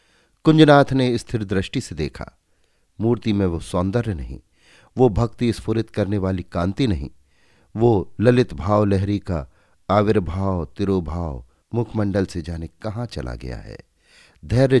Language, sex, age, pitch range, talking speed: Hindi, male, 50-69, 85-130 Hz, 135 wpm